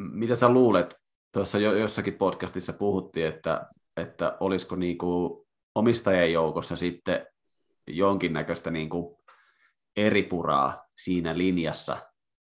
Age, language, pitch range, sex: 30-49, Finnish, 80-100 Hz, male